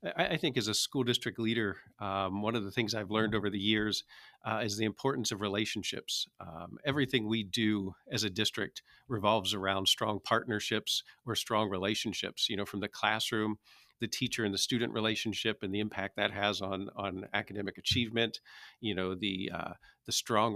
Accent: American